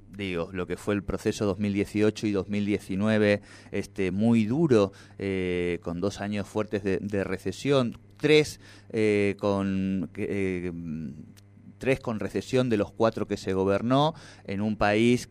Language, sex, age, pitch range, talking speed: Spanish, male, 30-49, 100-120 Hz, 125 wpm